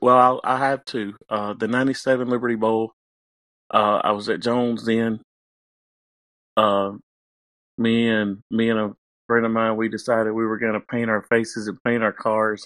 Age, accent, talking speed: 40-59, American, 175 wpm